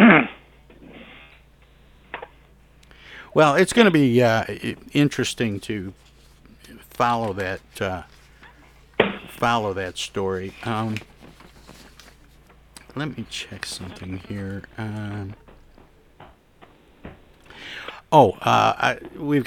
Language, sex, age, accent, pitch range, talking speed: English, male, 60-79, American, 95-120 Hz, 75 wpm